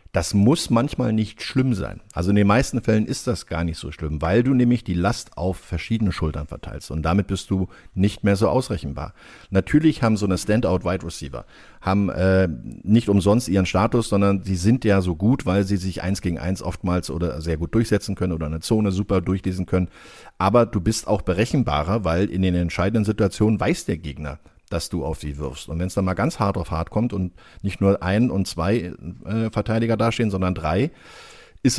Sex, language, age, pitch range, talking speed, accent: male, German, 50-69, 90-115 Hz, 210 wpm, German